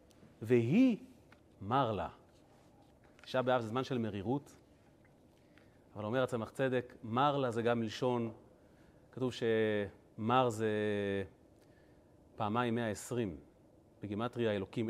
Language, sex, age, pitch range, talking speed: Hebrew, male, 30-49, 110-145 Hz, 95 wpm